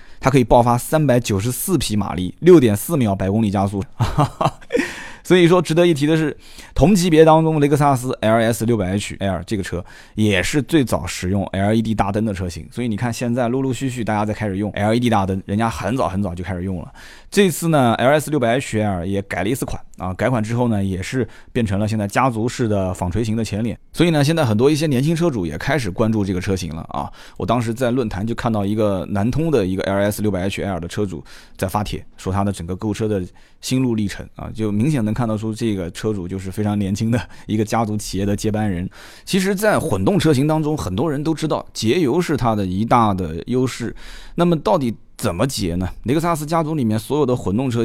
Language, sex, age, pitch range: Chinese, male, 20-39, 100-135 Hz